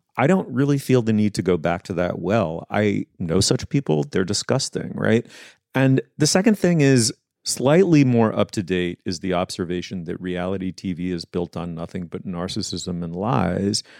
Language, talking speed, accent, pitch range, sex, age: English, 175 wpm, American, 95-125 Hz, male, 40-59